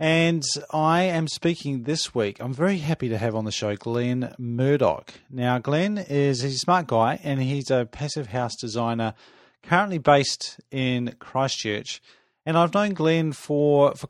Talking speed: 160 wpm